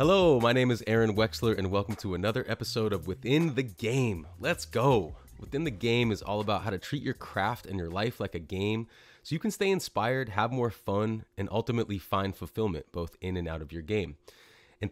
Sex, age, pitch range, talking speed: male, 30-49, 95-115 Hz, 215 wpm